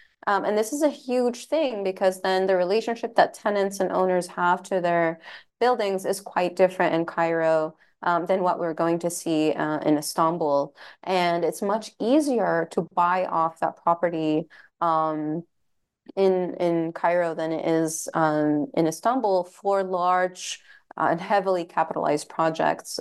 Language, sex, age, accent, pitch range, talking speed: English, female, 20-39, American, 160-190 Hz, 155 wpm